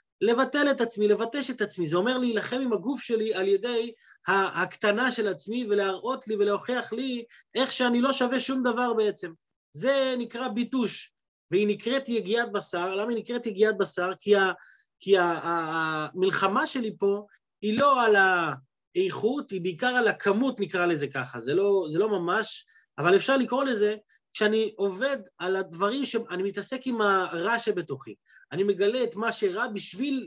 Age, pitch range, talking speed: 30-49, 195-240 Hz, 165 wpm